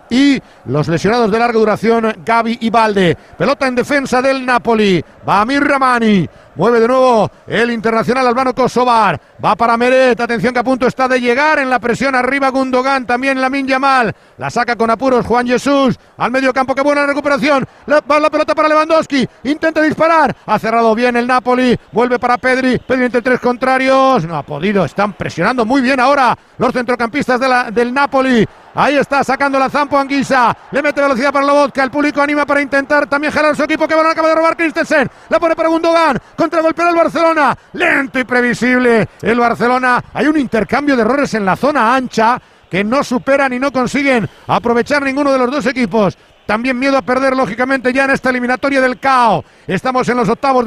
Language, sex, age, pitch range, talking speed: Spanish, male, 50-69, 225-270 Hz, 190 wpm